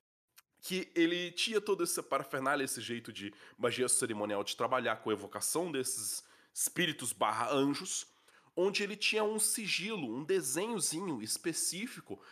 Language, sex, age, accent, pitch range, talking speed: Portuguese, male, 20-39, Brazilian, 135-205 Hz, 135 wpm